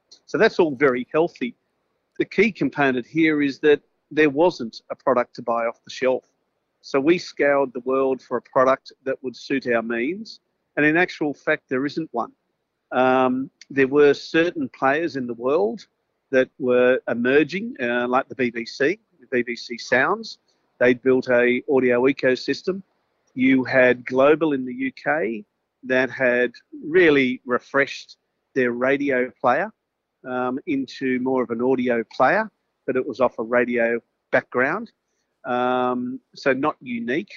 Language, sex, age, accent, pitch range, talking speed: English, male, 50-69, Australian, 125-155 Hz, 155 wpm